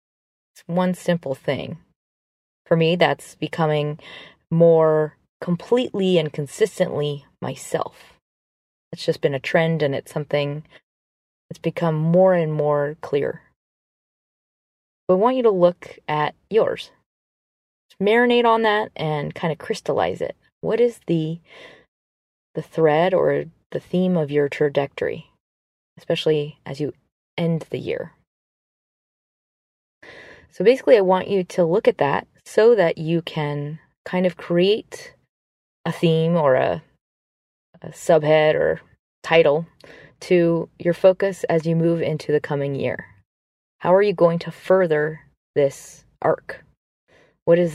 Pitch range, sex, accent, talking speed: 140-180 Hz, female, American, 130 wpm